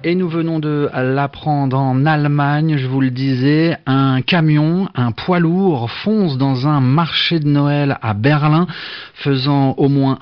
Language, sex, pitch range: French, male, 125-155 Hz